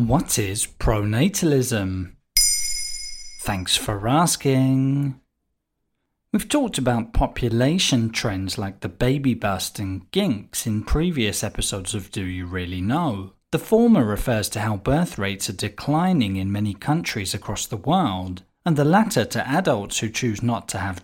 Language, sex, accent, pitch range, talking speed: English, male, British, 100-145 Hz, 145 wpm